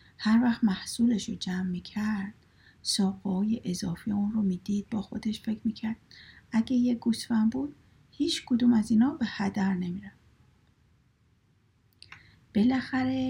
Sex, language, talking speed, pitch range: female, Persian, 115 wpm, 195-235 Hz